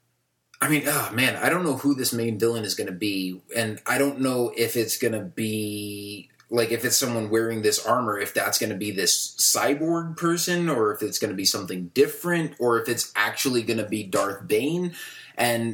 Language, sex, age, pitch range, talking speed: English, male, 20-39, 105-125 Hz, 215 wpm